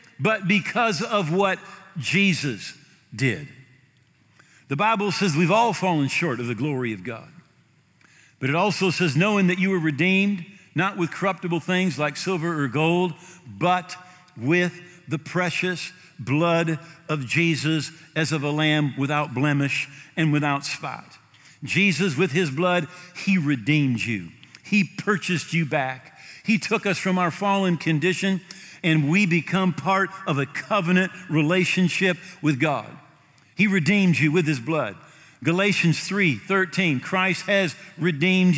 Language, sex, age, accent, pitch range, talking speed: English, male, 50-69, American, 150-190 Hz, 140 wpm